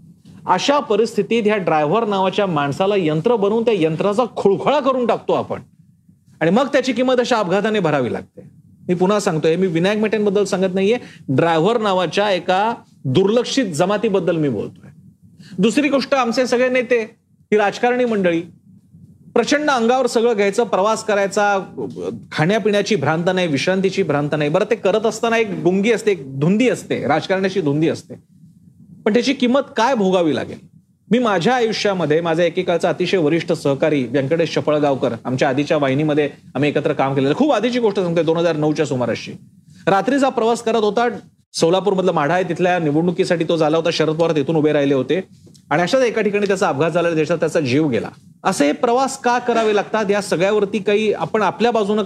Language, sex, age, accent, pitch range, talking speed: Marathi, male, 40-59, native, 165-225 Hz, 165 wpm